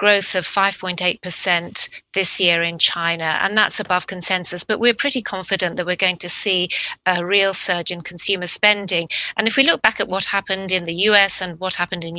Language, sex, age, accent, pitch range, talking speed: English, female, 30-49, British, 175-200 Hz, 200 wpm